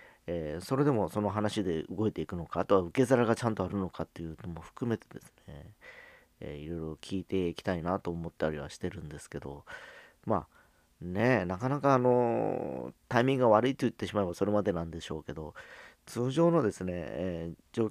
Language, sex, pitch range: Japanese, male, 85-110 Hz